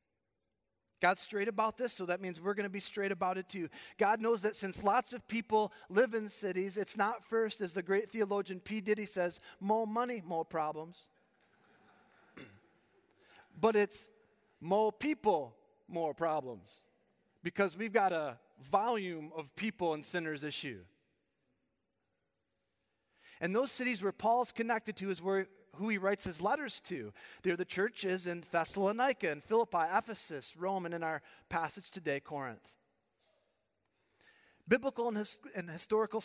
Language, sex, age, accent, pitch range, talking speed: English, male, 40-59, American, 170-215 Hz, 145 wpm